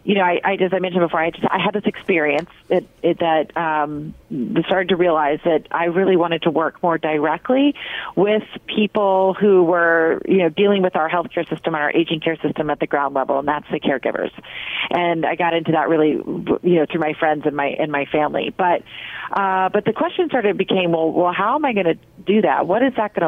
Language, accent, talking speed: English, American, 230 wpm